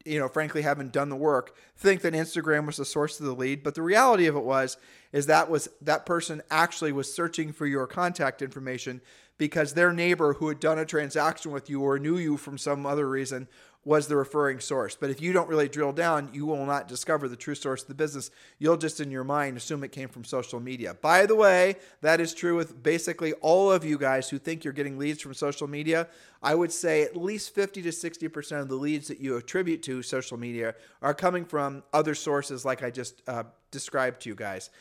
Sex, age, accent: male, 40-59, American